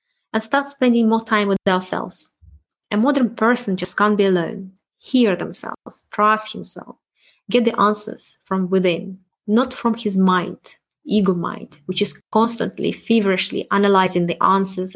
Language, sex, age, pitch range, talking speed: English, female, 20-39, 180-230 Hz, 145 wpm